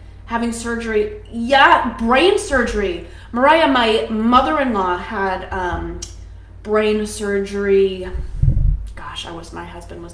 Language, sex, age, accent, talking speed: English, female, 20-39, American, 105 wpm